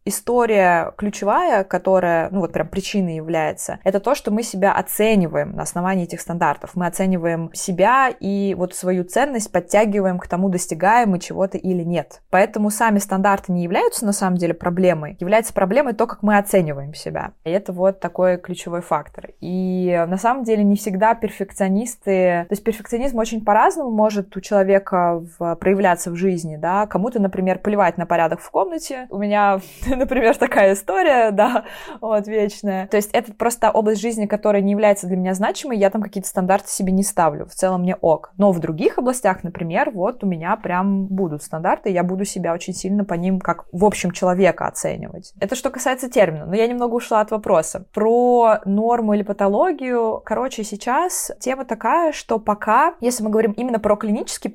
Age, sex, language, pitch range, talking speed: 20-39, female, Russian, 180-220 Hz, 175 wpm